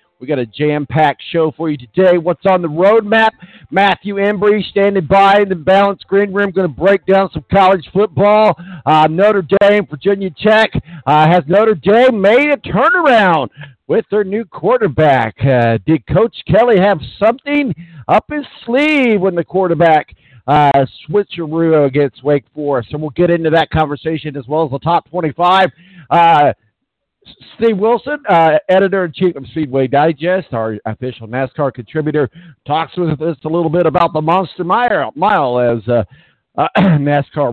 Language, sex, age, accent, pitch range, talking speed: English, male, 50-69, American, 145-200 Hz, 160 wpm